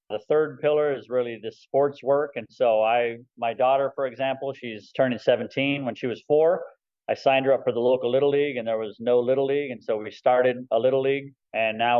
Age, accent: 30-49, American